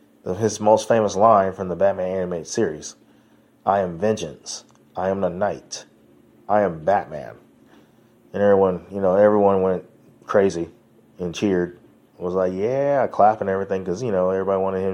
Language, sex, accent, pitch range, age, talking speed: English, male, American, 90-105 Hz, 20-39, 165 wpm